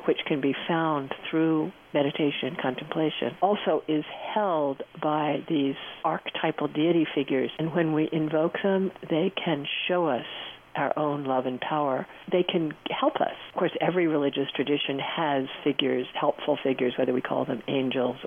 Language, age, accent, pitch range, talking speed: English, 50-69, American, 135-160 Hz, 160 wpm